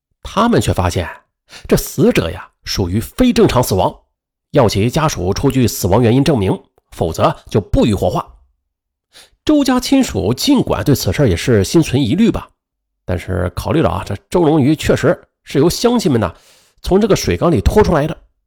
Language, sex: Chinese, male